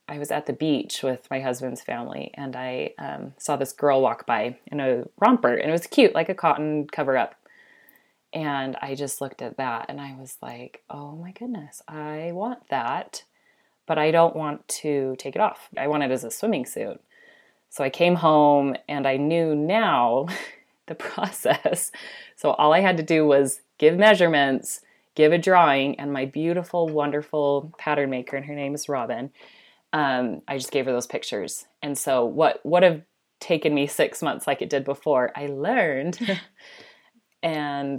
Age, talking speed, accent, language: 30-49, 180 wpm, American, English